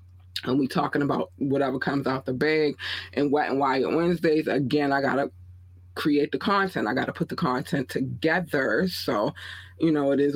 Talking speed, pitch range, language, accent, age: 180 wpm, 125-155 Hz, English, American, 20-39